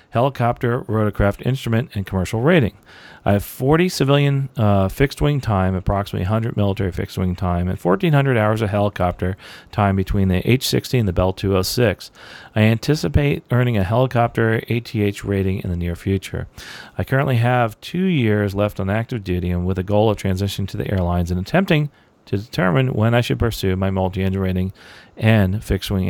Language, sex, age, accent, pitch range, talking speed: English, male, 40-59, American, 100-125 Hz, 170 wpm